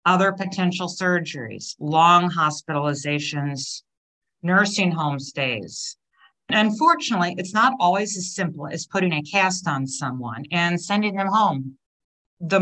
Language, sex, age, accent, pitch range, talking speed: English, female, 50-69, American, 145-185 Hz, 125 wpm